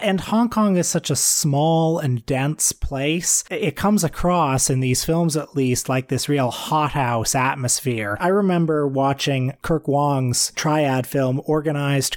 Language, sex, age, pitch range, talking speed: English, male, 30-49, 125-155 Hz, 155 wpm